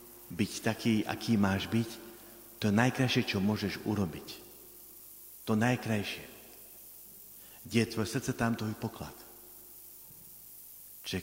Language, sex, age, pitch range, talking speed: Slovak, male, 50-69, 95-130 Hz, 110 wpm